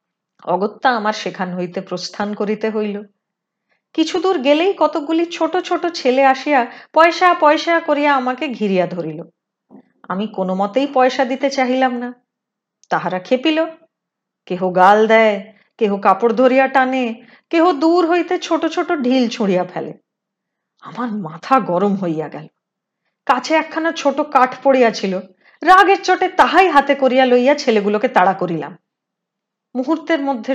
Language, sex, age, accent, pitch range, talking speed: Hindi, female, 30-49, native, 200-300 Hz, 105 wpm